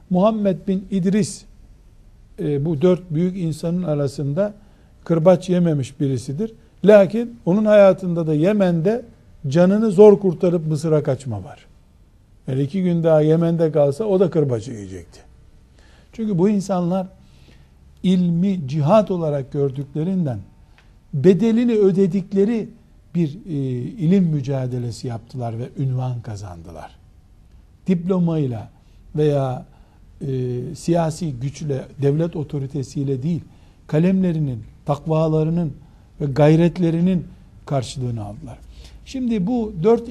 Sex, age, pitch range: male, 60-79, 125-190 Hz